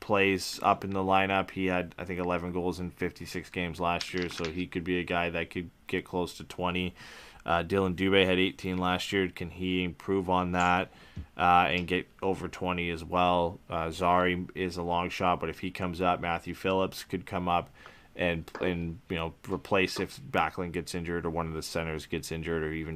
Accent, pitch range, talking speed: American, 80-95 Hz, 210 wpm